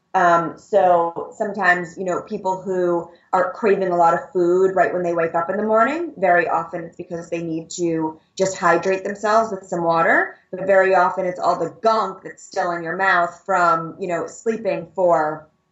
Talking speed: 195 wpm